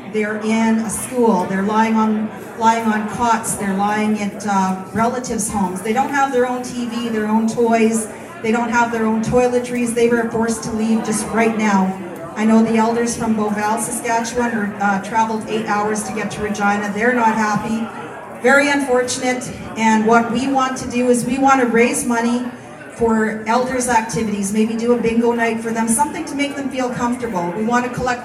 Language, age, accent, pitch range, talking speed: English, 40-59, American, 210-240 Hz, 195 wpm